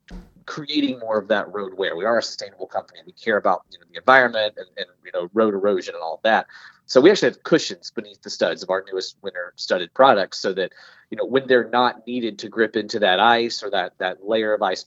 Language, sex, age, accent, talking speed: English, male, 30-49, American, 240 wpm